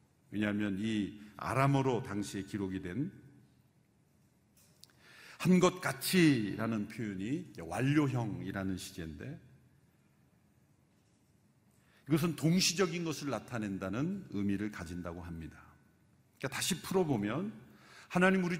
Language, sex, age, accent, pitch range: Korean, male, 50-69, native, 120-180 Hz